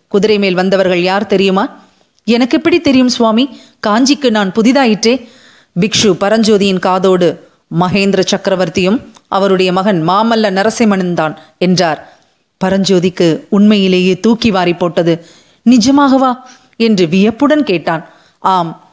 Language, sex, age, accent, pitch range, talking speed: Tamil, female, 30-49, native, 190-245 Hz, 100 wpm